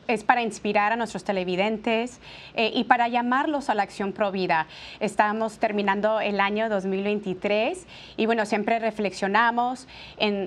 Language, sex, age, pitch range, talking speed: Spanish, female, 30-49, 200-240 Hz, 145 wpm